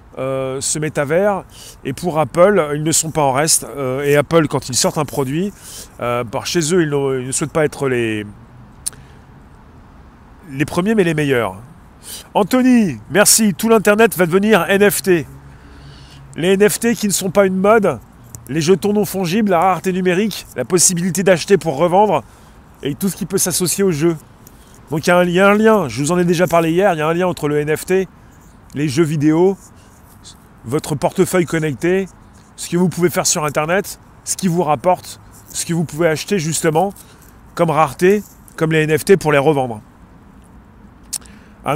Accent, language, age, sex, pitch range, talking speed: French, French, 30-49, male, 140-190 Hz, 180 wpm